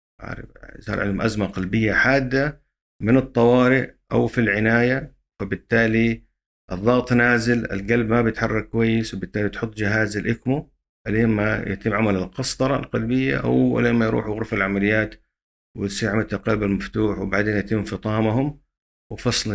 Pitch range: 95-120 Hz